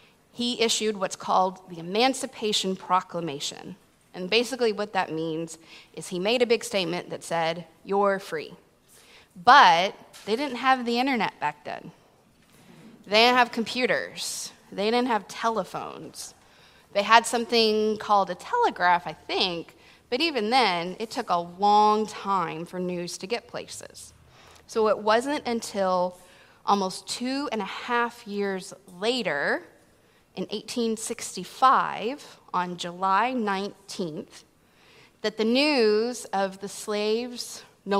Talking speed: 130 wpm